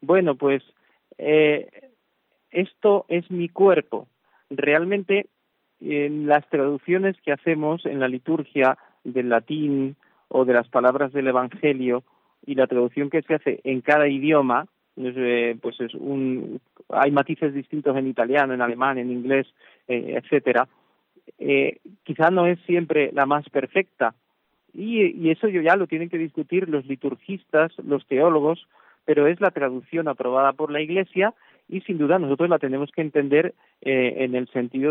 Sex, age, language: male, 40-59, Spanish